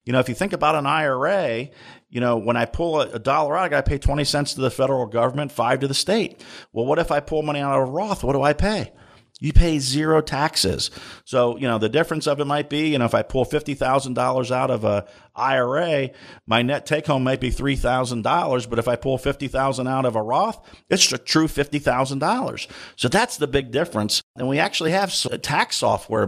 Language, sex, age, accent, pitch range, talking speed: English, male, 50-69, American, 115-140 Hz, 215 wpm